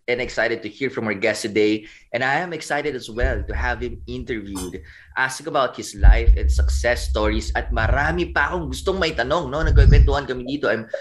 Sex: male